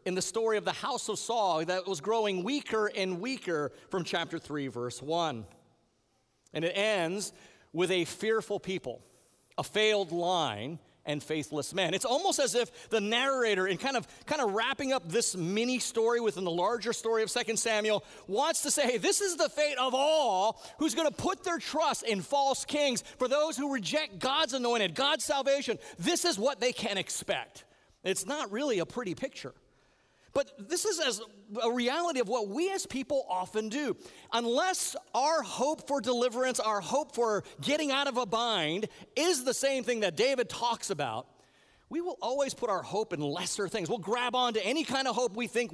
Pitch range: 190-270 Hz